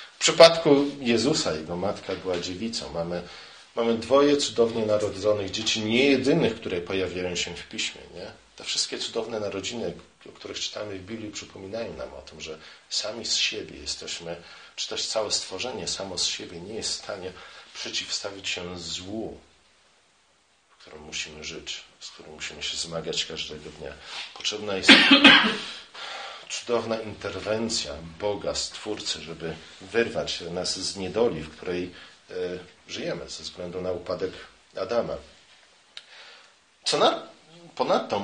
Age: 40-59